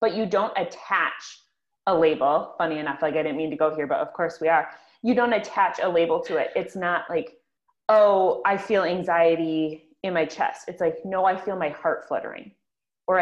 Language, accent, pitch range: English, American, 170-245 Hz